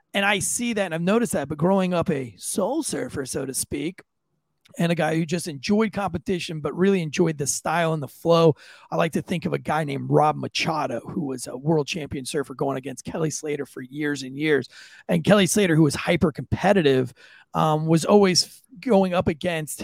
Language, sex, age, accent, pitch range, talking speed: English, male, 40-59, American, 150-195 Hz, 205 wpm